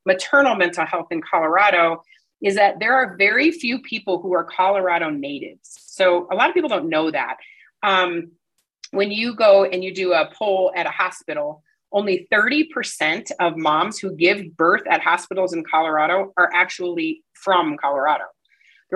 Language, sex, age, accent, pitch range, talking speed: English, female, 30-49, American, 165-205 Hz, 165 wpm